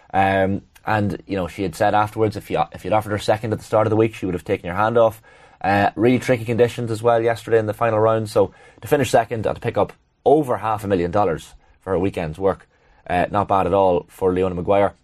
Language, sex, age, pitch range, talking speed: English, male, 20-39, 95-115 Hz, 250 wpm